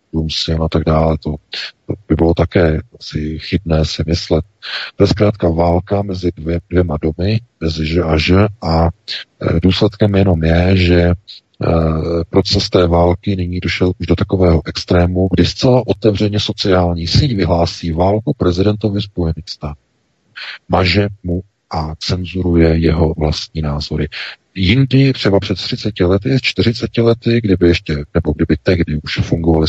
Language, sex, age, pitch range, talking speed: Czech, male, 40-59, 80-100 Hz, 140 wpm